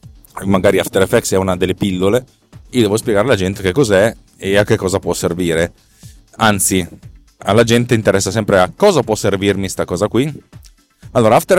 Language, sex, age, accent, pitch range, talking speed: Italian, male, 20-39, native, 95-115 Hz, 175 wpm